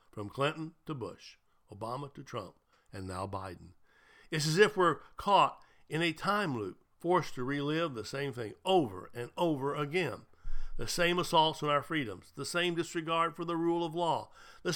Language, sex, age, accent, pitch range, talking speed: English, male, 60-79, American, 110-165 Hz, 180 wpm